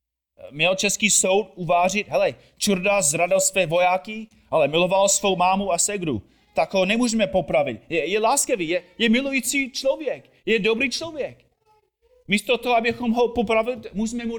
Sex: male